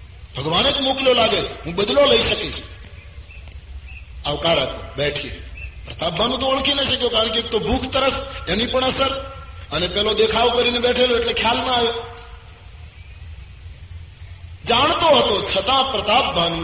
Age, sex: 30-49, male